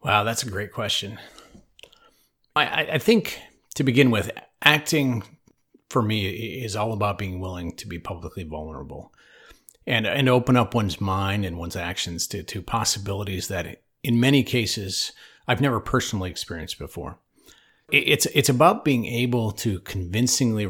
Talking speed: 150 wpm